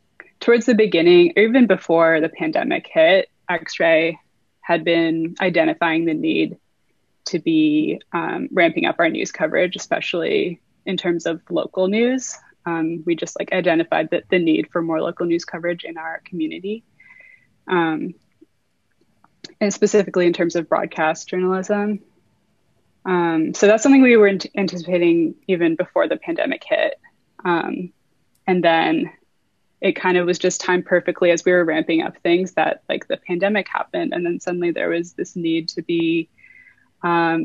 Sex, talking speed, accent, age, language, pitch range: female, 155 wpm, American, 20-39, English, 165-210 Hz